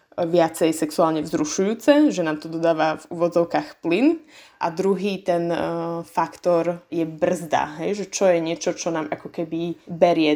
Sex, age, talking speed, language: female, 20-39, 150 wpm, Slovak